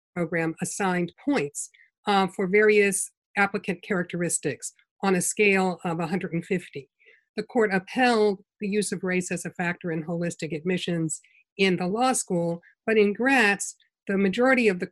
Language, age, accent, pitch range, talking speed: English, 50-69, American, 180-220 Hz, 150 wpm